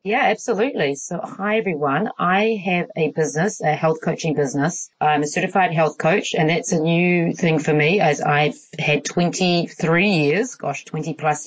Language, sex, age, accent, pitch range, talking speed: English, female, 30-49, Australian, 145-180 Hz, 175 wpm